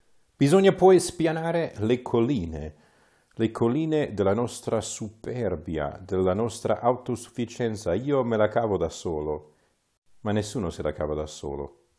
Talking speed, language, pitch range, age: 130 wpm, Italian, 85-115 Hz, 40-59